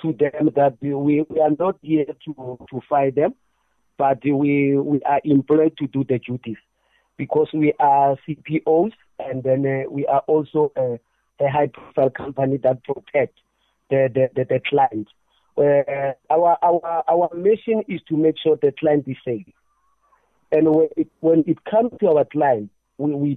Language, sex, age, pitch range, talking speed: English, male, 50-69, 140-195 Hz, 170 wpm